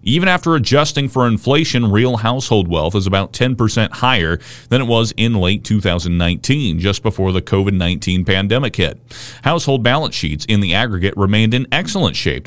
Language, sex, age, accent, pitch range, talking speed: English, male, 40-59, American, 100-125 Hz, 165 wpm